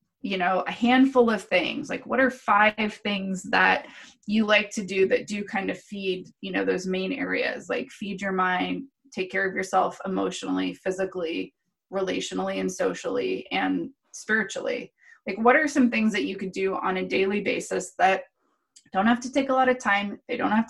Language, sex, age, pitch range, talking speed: English, female, 20-39, 190-250 Hz, 190 wpm